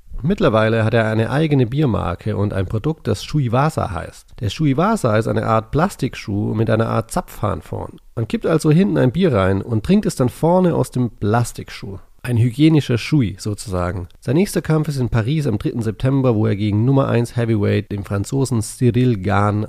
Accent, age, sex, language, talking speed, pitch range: German, 30-49, male, English, 190 wpm, 105-140 Hz